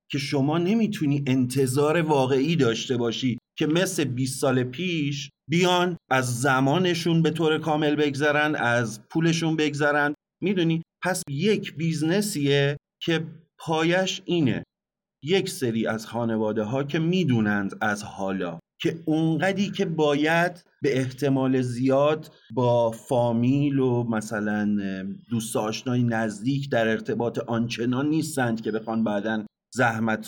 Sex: male